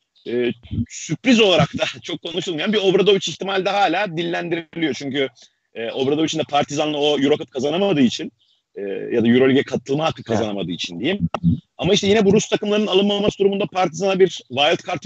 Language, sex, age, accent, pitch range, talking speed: Turkish, male, 40-59, native, 130-190 Hz, 165 wpm